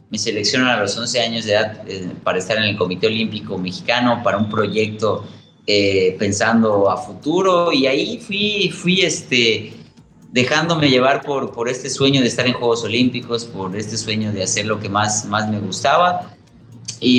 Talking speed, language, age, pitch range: 180 wpm, Spanish, 30-49, 105-130 Hz